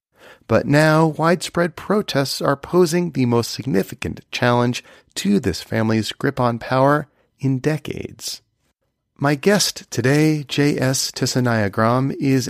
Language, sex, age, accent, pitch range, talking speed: English, male, 40-59, American, 110-145 Hz, 115 wpm